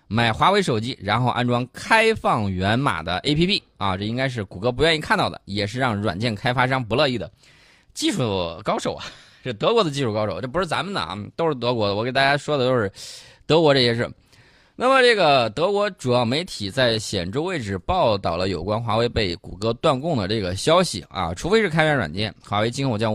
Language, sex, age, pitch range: Chinese, male, 20-39, 105-140 Hz